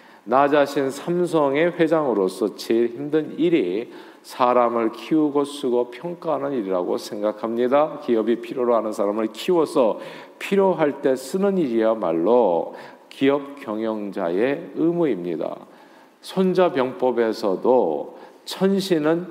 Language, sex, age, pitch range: Korean, male, 50-69, 110-155 Hz